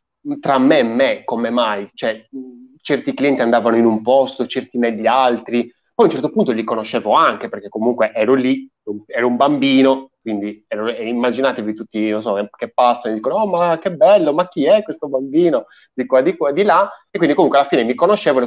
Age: 30-49